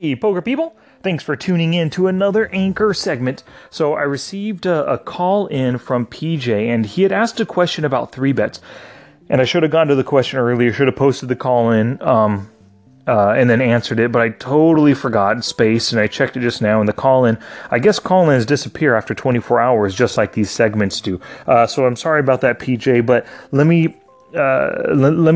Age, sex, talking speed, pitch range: 30-49, male, 200 wpm, 120-160 Hz